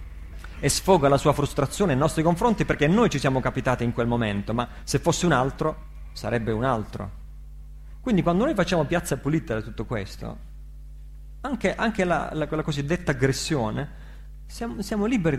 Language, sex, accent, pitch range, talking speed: Italian, male, native, 105-155 Hz, 160 wpm